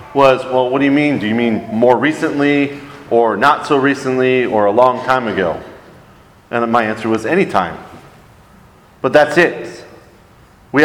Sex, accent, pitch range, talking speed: male, American, 120-145 Hz, 165 wpm